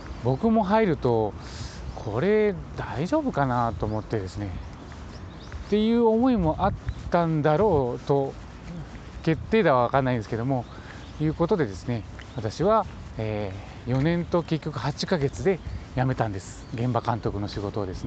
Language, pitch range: Japanese, 110-150 Hz